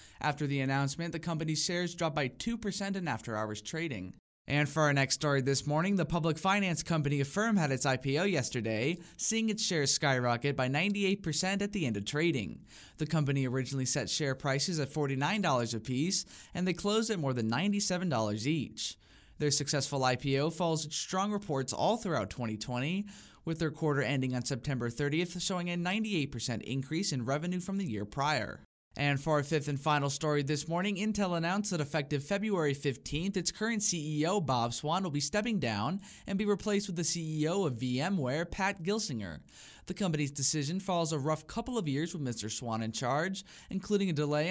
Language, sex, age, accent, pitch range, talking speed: English, male, 20-39, American, 135-185 Hz, 180 wpm